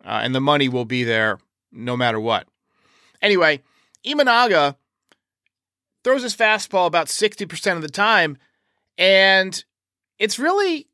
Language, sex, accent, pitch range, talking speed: English, male, American, 150-215 Hz, 130 wpm